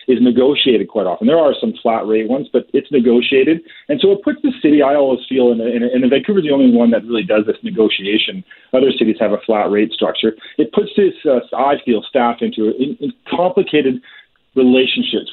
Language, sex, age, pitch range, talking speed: English, male, 40-59, 110-145 Hz, 205 wpm